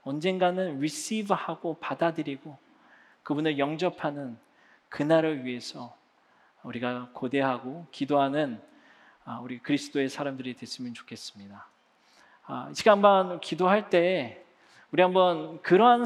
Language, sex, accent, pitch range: Korean, male, native, 130-165 Hz